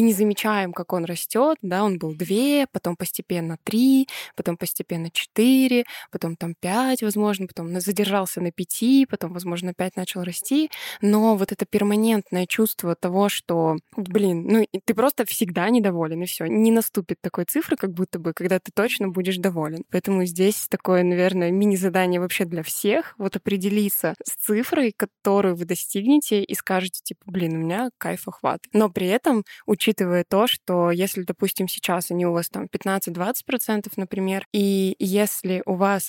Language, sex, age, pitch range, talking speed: Russian, female, 20-39, 180-210 Hz, 165 wpm